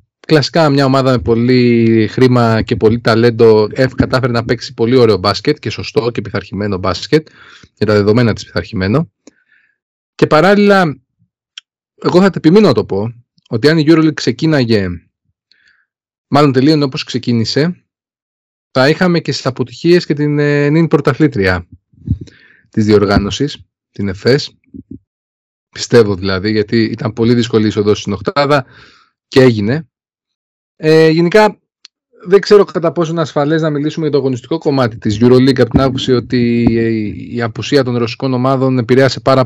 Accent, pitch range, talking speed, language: native, 110-140 Hz, 145 wpm, Greek